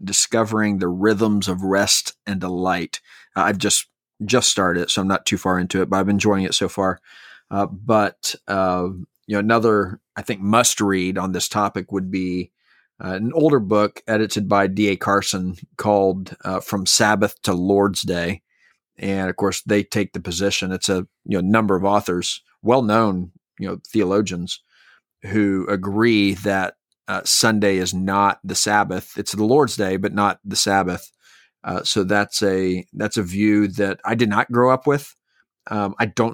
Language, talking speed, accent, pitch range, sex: English, 180 wpm, American, 95-110 Hz, male